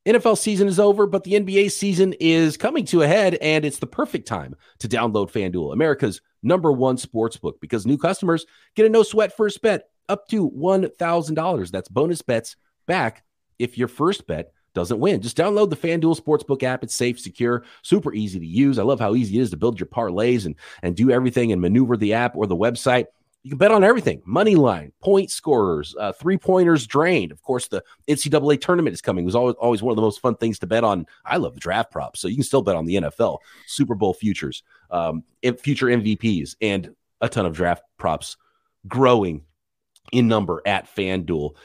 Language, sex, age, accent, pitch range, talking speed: English, male, 30-49, American, 115-180 Hz, 205 wpm